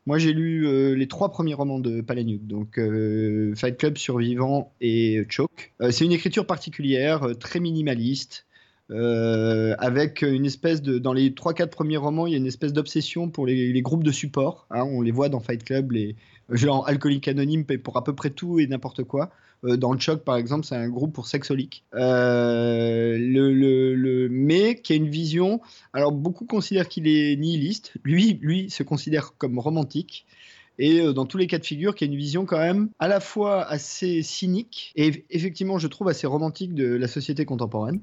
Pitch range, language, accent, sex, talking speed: 120-155 Hz, French, French, male, 205 wpm